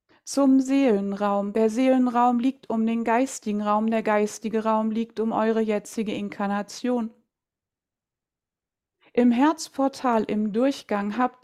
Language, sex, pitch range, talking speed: German, female, 220-255 Hz, 115 wpm